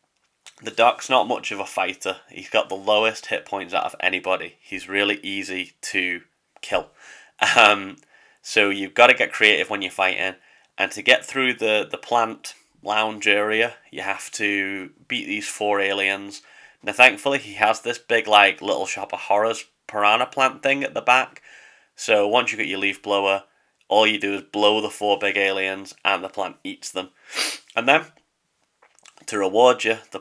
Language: English